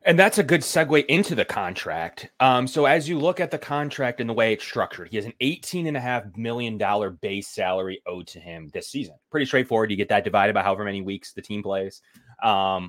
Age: 20-39